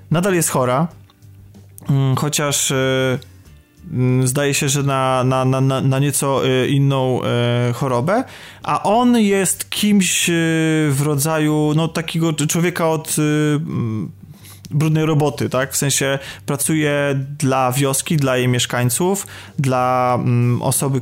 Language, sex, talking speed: Polish, male, 100 wpm